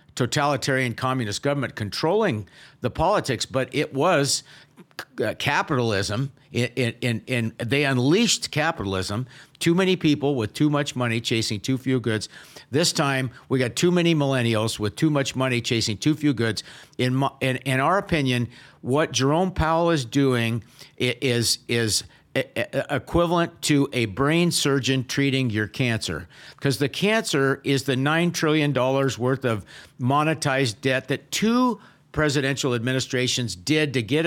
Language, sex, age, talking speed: English, male, 50-69, 145 wpm